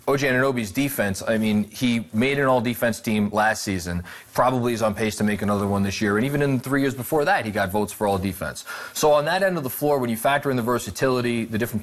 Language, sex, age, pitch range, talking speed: English, male, 30-49, 110-145 Hz, 250 wpm